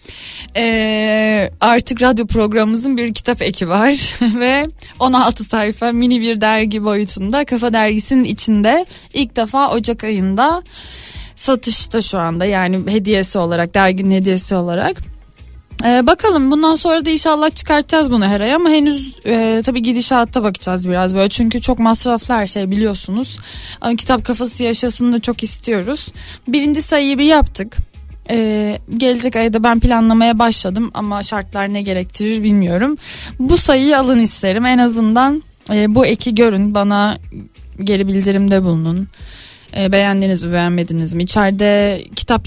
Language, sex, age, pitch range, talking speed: Turkish, female, 10-29, 195-260 Hz, 135 wpm